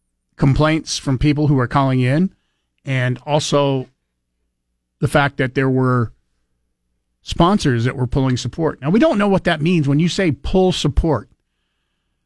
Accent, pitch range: American, 100-140 Hz